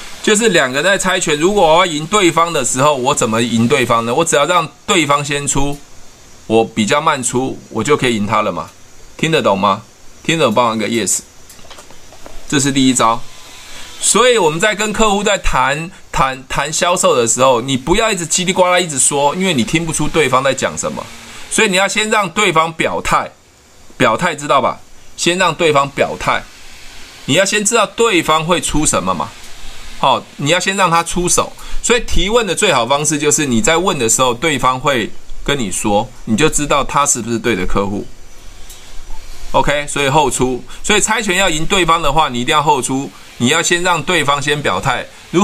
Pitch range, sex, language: 125-180 Hz, male, Chinese